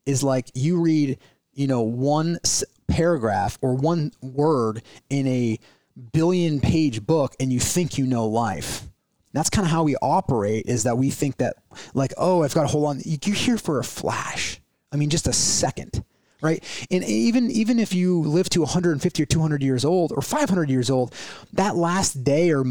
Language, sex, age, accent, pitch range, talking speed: English, male, 30-49, American, 125-165 Hz, 190 wpm